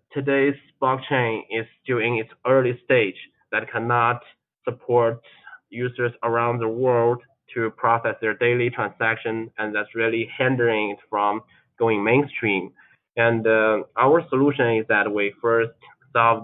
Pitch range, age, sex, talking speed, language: 110-125 Hz, 20-39, male, 135 wpm, English